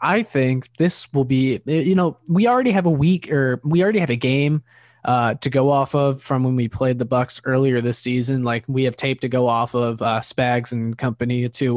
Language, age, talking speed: English, 20-39, 230 wpm